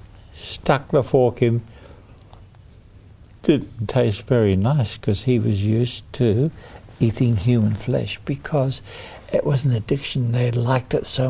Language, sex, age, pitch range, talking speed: English, male, 60-79, 110-140 Hz, 135 wpm